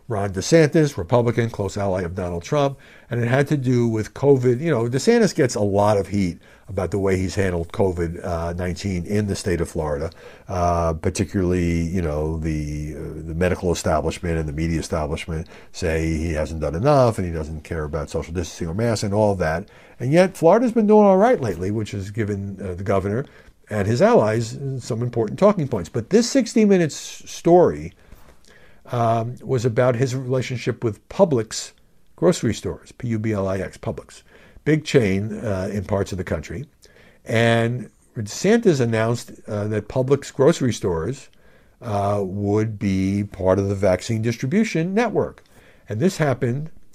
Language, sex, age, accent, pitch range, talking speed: English, male, 60-79, American, 90-130 Hz, 165 wpm